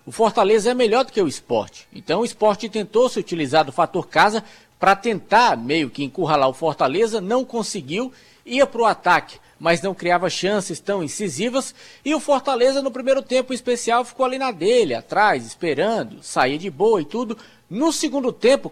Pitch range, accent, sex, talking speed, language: 175-240 Hz, Brazilian, male, 185 wpm, Portuguese